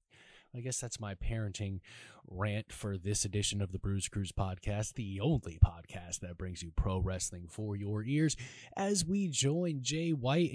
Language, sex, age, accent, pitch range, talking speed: English, male, 20-39, American, 105-130 Hz, 170 wpm